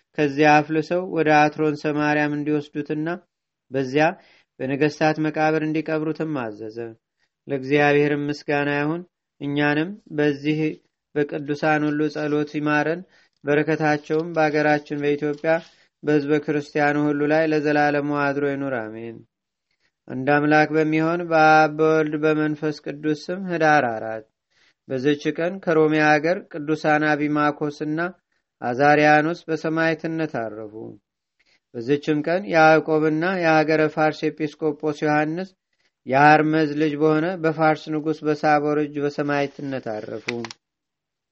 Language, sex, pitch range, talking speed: Amharic, male, 145-155 Hz, 90 wpm